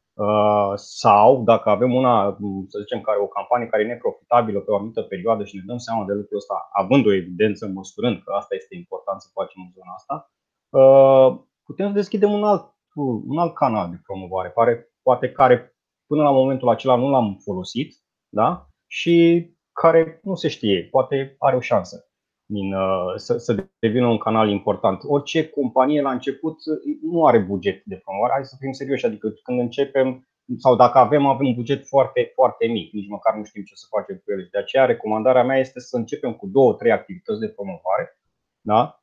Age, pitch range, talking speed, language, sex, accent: 30-49, 105-145 Hz, 190 wpm, Romanian, male, native